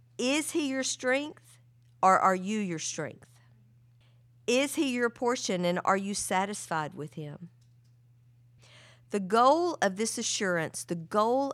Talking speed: 135 wpm